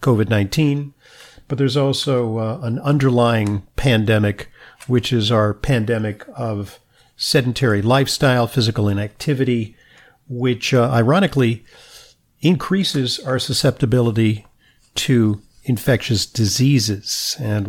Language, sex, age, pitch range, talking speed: English, male, 50-69, 110-130 Hz, 90 wpm